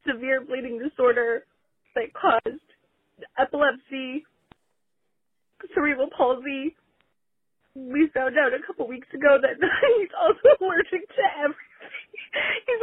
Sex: female